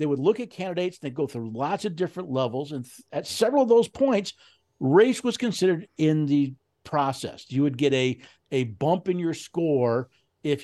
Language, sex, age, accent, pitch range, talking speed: English, male, 50-69, American, 140-190 Hz, 195 wpm